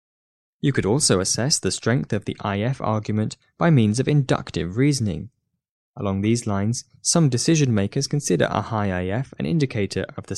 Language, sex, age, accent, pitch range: Chinese, male, 10-29, British, 100-135 Hz